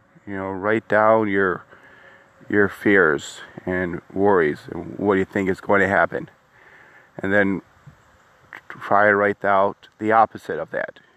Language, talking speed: English, 150 wpm